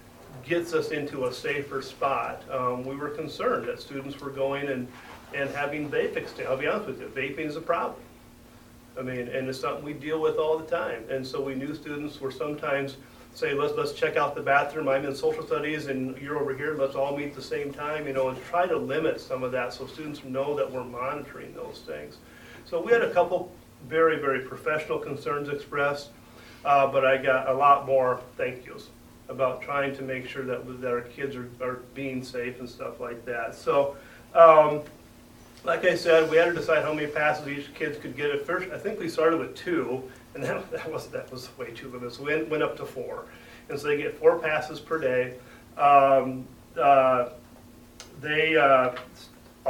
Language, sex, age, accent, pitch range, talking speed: English, male, 40-59, American, 125-155 Hz, 210 wpm